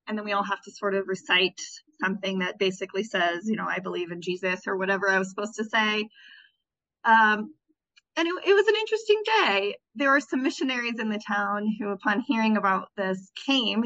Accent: American